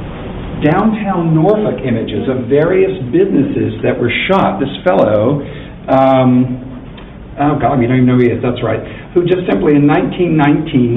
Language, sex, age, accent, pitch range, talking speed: English, male, 50-69, American, 115-135 Hz, 155 wpm